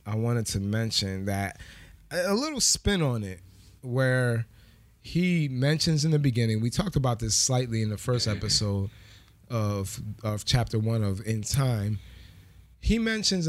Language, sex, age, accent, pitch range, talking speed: English, male, 20-39, American, 105-130 Hz, 150 wpm